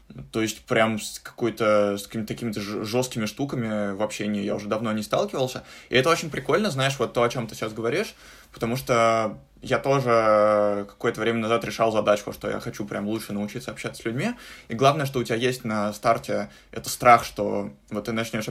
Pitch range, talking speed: 105-125 Hz, 200 wpm